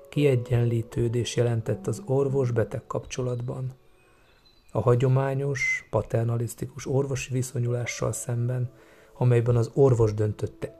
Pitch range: 120-140 Hz